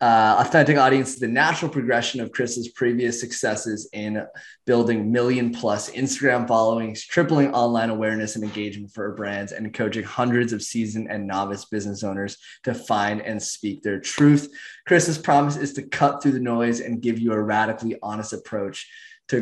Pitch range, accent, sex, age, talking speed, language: 110-125 Hz, American, male, 20-39, 165 wpm, English